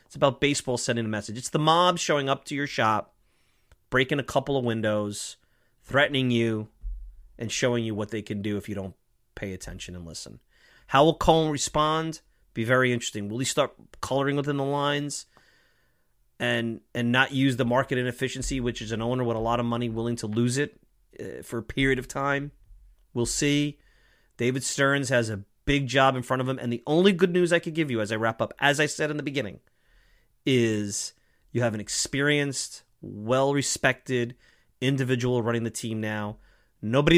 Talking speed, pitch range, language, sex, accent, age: 190 wpm, 110-135 Hz, English, male, American, 30-49